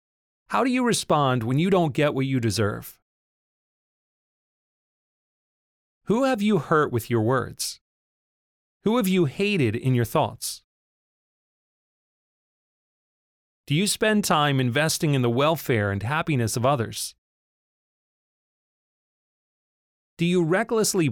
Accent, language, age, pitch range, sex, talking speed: American, English, 30-49, 120-175 Hz, male, 115 wpm